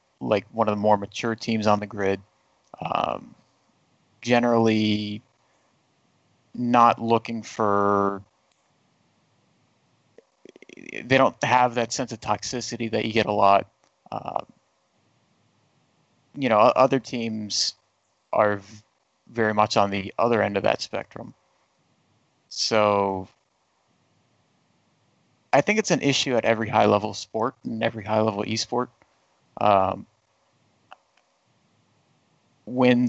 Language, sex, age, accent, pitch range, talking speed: English, male, 30-49, American, 105-125 Hz, 110 wpm